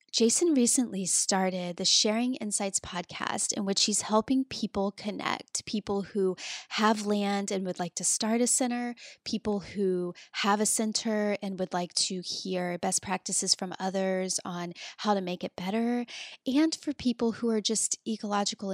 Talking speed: 165 wpm